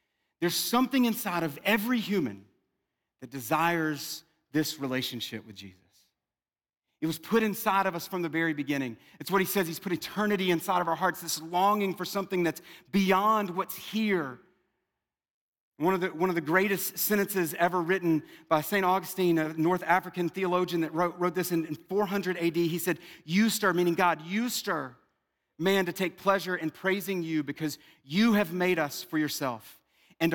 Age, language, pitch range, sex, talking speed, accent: 40-59, English, 160-210 Hz, male, 170 wpm, American